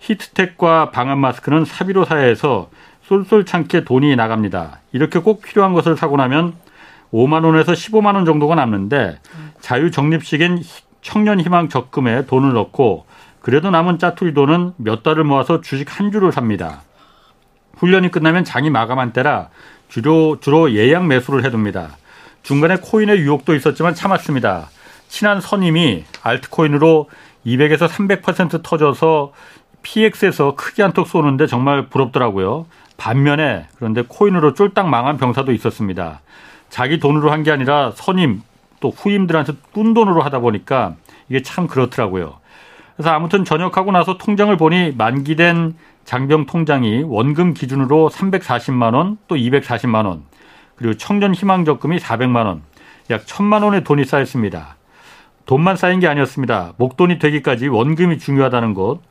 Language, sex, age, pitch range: Korean, male, 40-59, 130-175 Hz